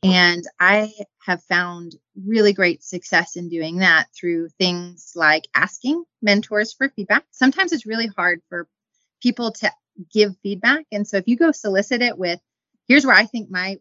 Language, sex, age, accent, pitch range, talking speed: English, female, 30-49, American, 175-215 Hz, 170 wpm